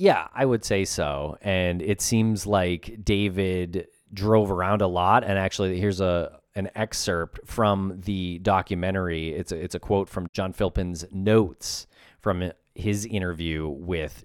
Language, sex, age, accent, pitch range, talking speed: English, male, 30-49, American, 90-120 Hz, 150 wpm